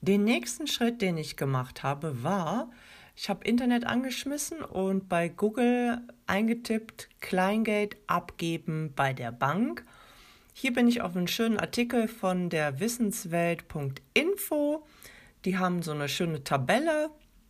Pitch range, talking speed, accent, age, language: 170-240 Hz, 125 wpm, German, 40-59, German